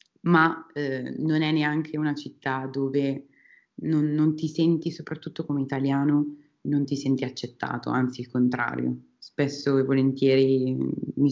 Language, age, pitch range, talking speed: Italian, 20-39, 135-155 Hz, 140 wpm